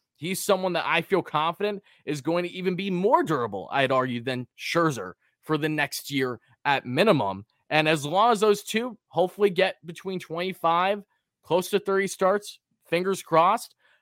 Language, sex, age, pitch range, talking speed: English, male, 20-39, 135-185 Hz, 165 wpm